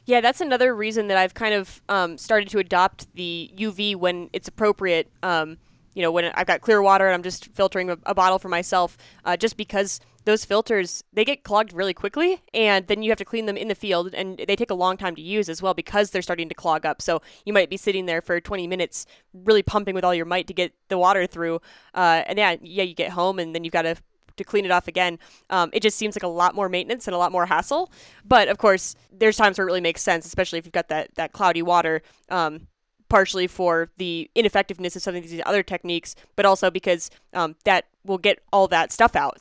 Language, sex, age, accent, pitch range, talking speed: English, female, 10-29, American, 170-205 Hz, 245 wpm